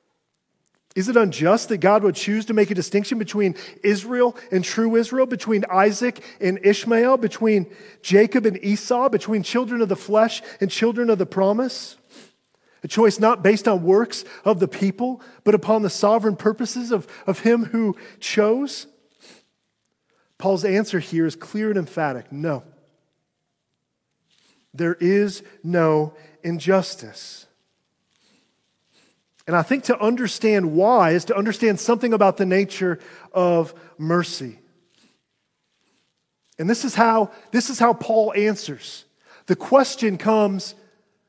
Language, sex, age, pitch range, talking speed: English, male, 40-59, 175-225 Hz, 135 wpm